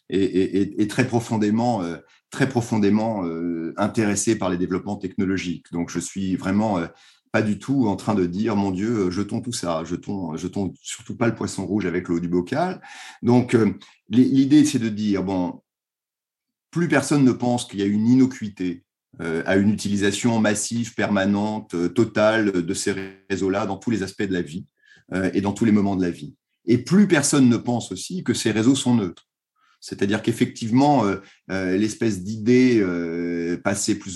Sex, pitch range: male, 95-115 Hz